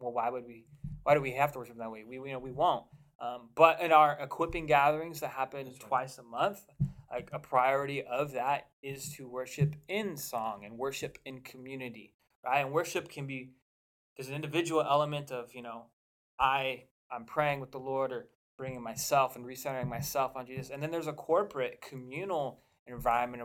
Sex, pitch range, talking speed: male, 125-145 Hz, 195 wpm